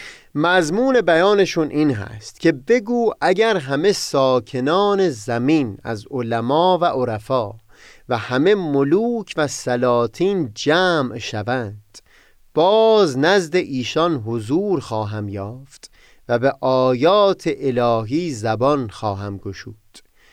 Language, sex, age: Persian, male, 30-49